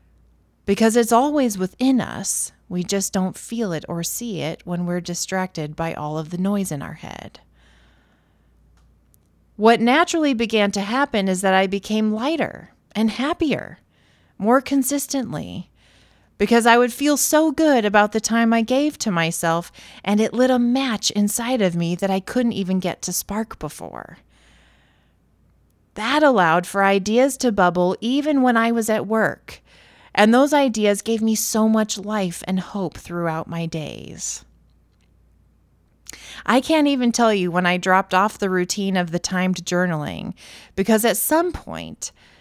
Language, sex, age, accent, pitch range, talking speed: English, female, 30-49, American, 180-235 Hz, 155 wpm